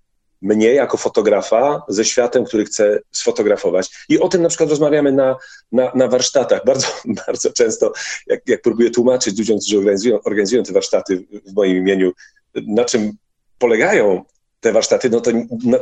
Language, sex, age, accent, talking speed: Polish, male, 40-59, native, 160 wpm